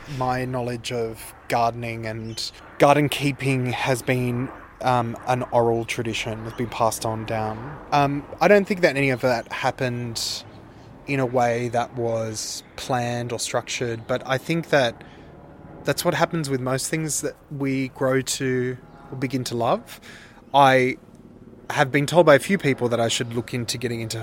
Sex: male